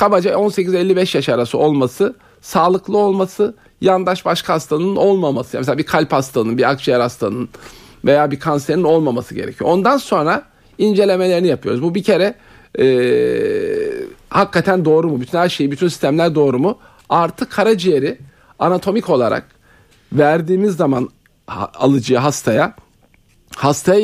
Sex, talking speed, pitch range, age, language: male, 125 wpm, 140-190 Hz, 50-69, Turkish